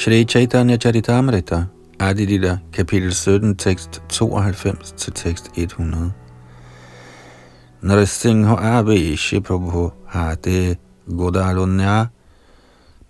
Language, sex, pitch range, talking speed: Danish, male, 85-110 Hz, 55 wpm